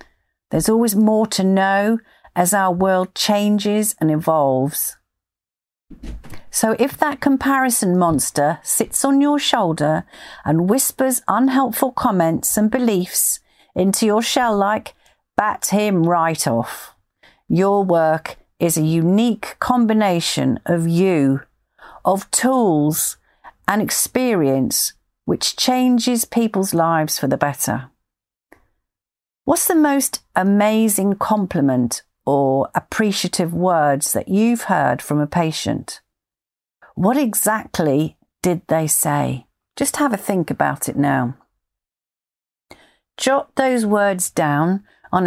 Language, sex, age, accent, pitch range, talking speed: English, female, 50-69, British, 160-225 Hz, 110 wpm